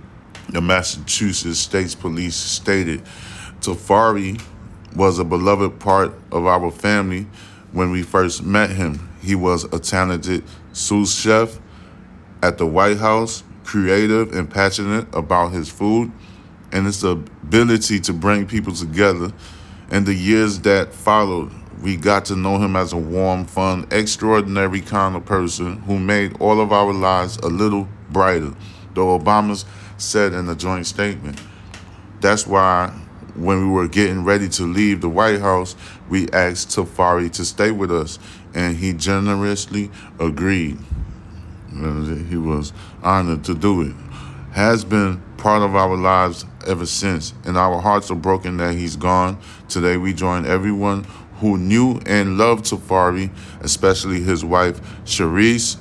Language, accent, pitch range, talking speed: English, American, 90-100 Hz, 145 wpm